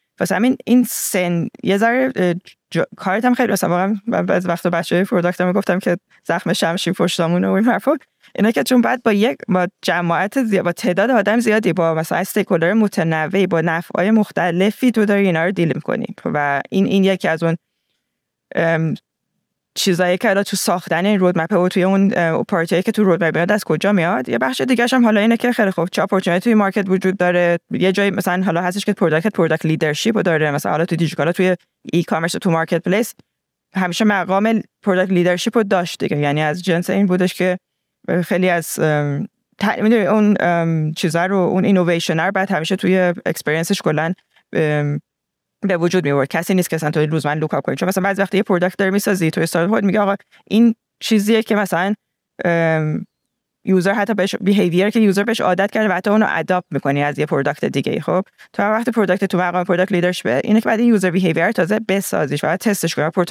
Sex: female